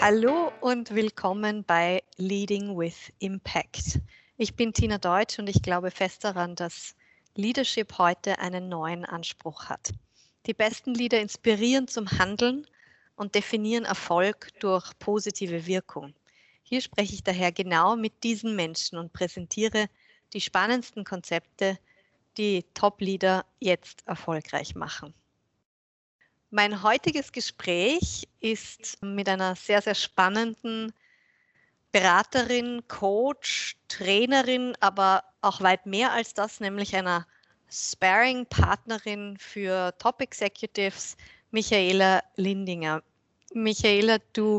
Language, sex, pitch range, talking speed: German, female, 185-225 Hz, 110 wpm